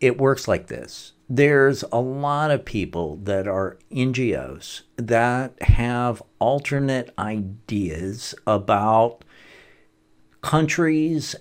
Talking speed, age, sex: 95 wpm, 60-79, male